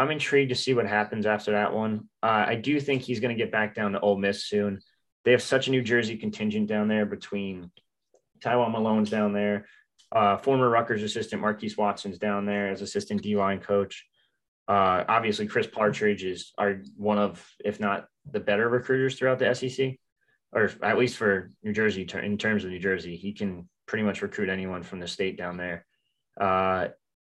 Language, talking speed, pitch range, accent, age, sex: English, 195 wpm, 100-125 Hz, American, 20-39, male